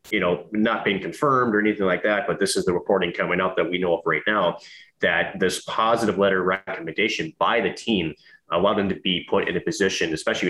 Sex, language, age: male, English, 30-49